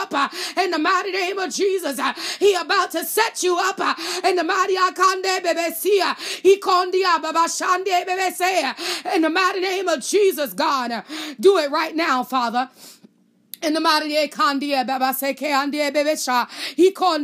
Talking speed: 145 wpm